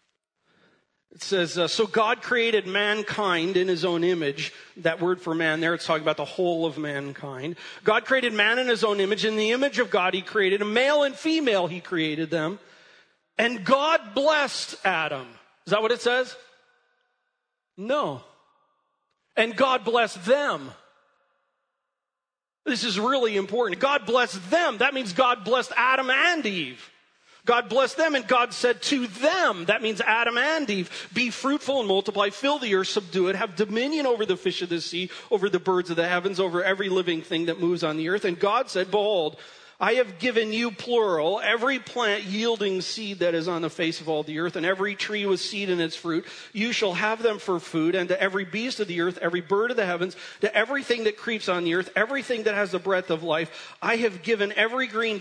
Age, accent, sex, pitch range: 40-59, American, male, 180-240 Hz